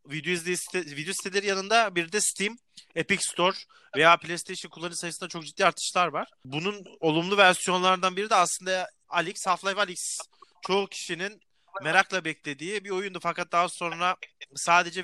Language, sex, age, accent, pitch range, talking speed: Turkish, male, 30-49, native, 170-200 Hz, 150 wpm